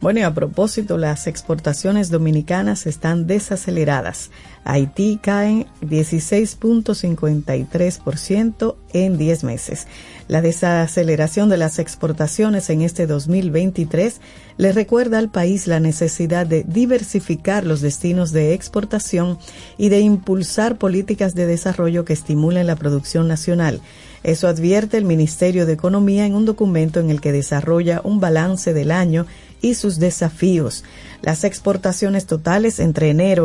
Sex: female